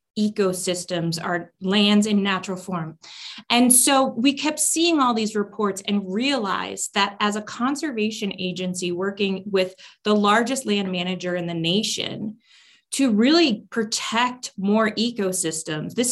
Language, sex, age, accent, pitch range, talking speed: English, female, 20-39, American, 180-235 Hz, 135 wpm